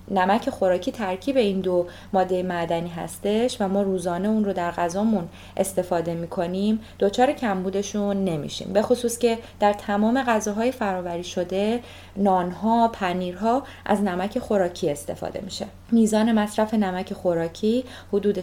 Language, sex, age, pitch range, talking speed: Persian, female, 30-49, 185-225 Hz, 135 wpm